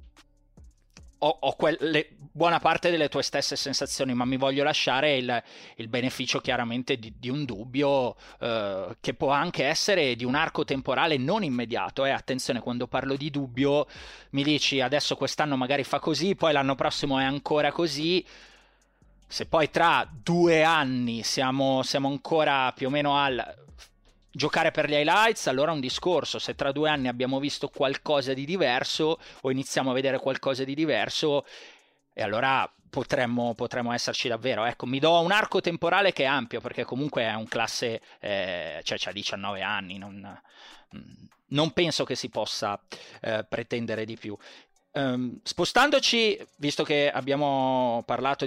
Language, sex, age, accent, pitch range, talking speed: Italian, male, 20-39, native, 125-150 Hz, 155 wpm